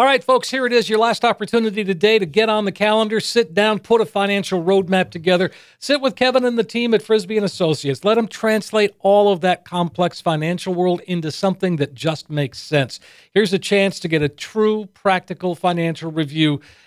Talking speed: 205 wpm